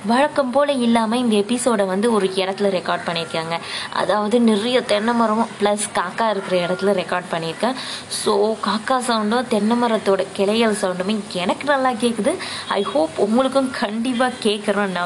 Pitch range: 210-280 Hz